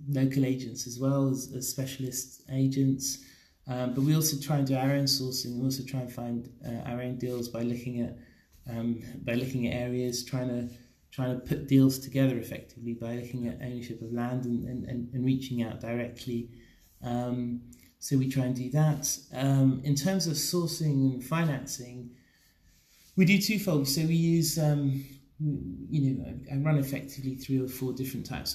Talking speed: 180 wpm